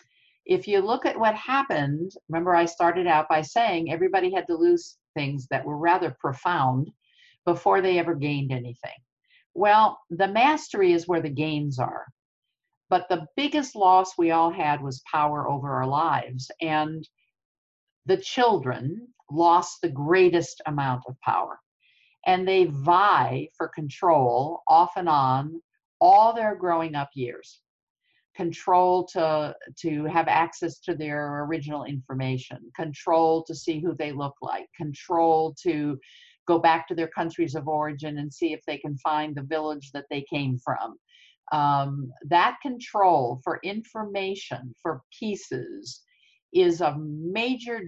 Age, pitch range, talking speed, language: 50-69, 145-210 Hz, 145 wpm, English